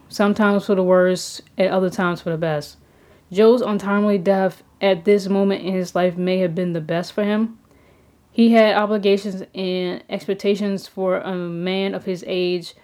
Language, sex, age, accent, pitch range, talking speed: English, female, 10-29, American, 175-205 Hz, 175 wpm